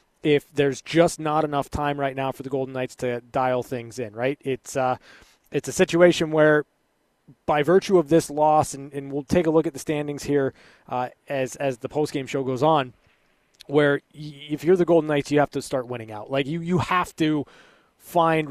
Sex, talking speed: male, 215 wpm